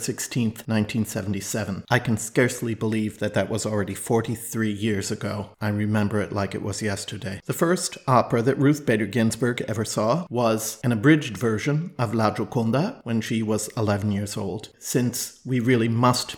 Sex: male